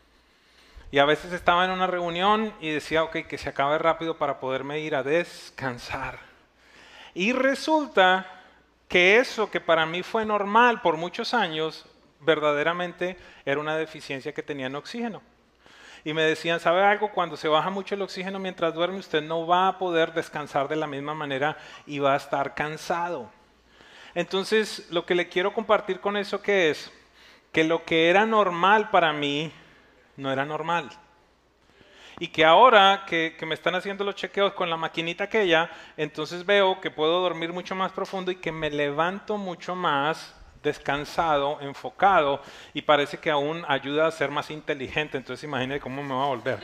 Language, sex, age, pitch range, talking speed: English, male, 30-49, 150-185 Hz, 170 wpm